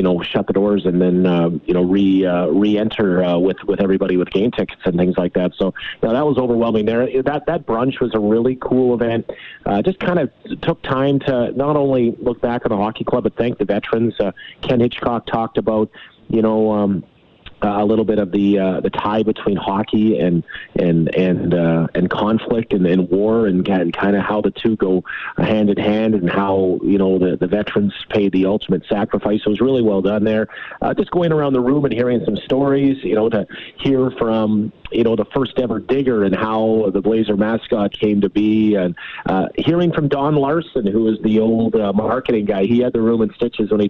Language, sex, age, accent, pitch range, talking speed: English, male, 30-49, American, 95-115 Hz, 225 wpm